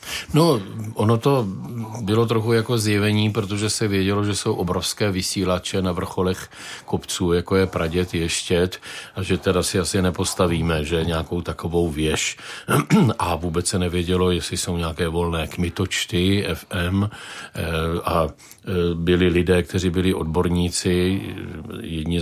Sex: male